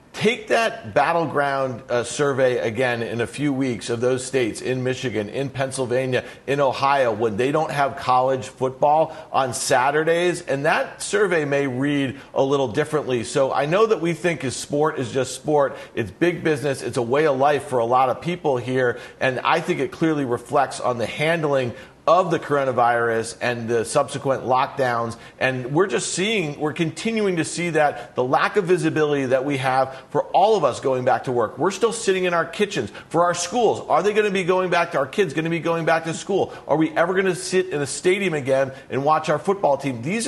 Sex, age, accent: male, 40-59, American